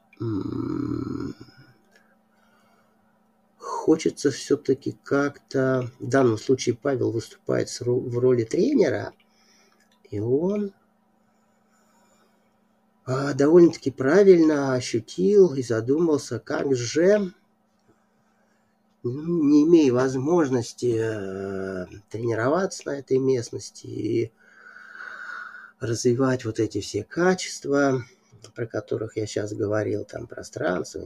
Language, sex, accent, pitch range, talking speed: Russian, male, native, 115-185 Hz, 75 wpm